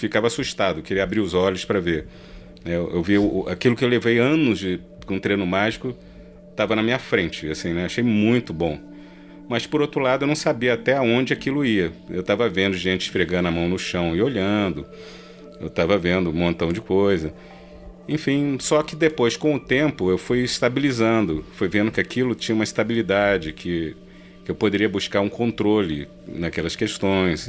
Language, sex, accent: Portuguese, male, Brazilian